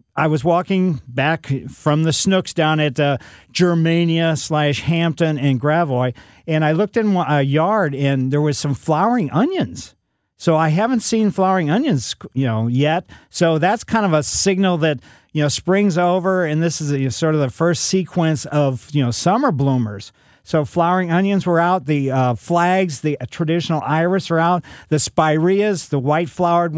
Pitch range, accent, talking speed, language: 140-175 Hz, American, 175 wpm, English